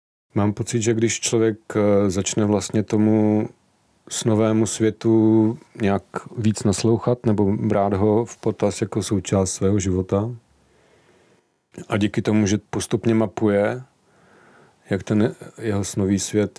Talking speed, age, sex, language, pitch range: 120 wpm, 40-59, male, Czech, 95-110 Hz